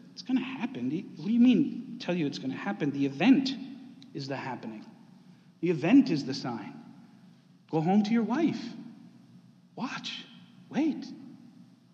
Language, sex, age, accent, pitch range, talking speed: English, male, 50-69, American, 145-205 Hz, 155 wpm